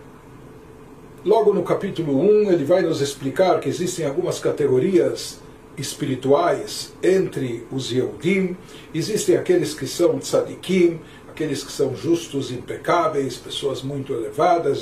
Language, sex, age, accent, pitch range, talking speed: Portuguese, male, 60-79, Brazilian, 140-190 Hz, 115 wpm